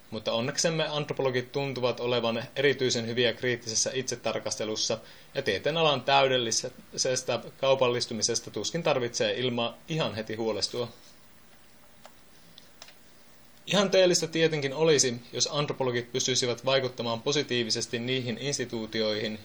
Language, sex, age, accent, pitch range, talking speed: Finnish, male, 30-49, native, 115-145 Hz, 95 wpm